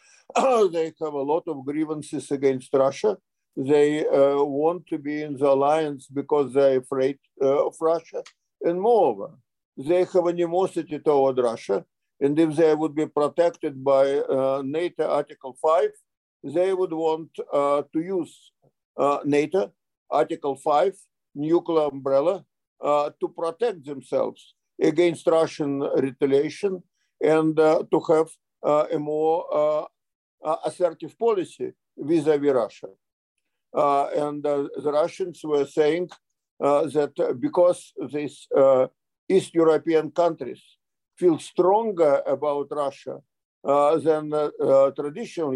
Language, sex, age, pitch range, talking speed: English, male, 50-69, 145-170 Hz, 130 wpm